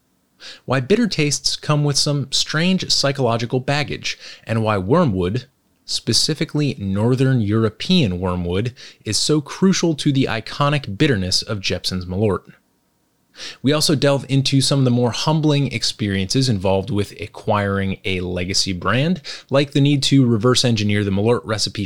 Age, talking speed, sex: 30-49, 140 wpm, male